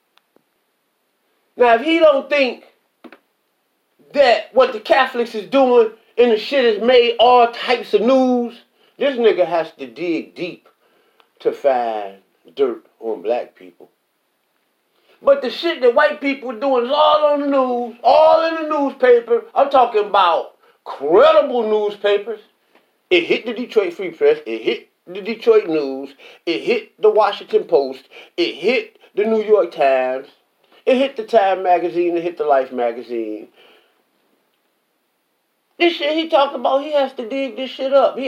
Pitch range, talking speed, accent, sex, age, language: 215-345 Hz, 155 wpm, American, male, 40-59, English